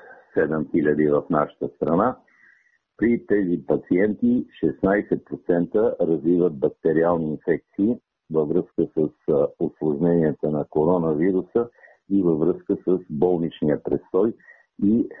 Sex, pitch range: male, 80-95 Hz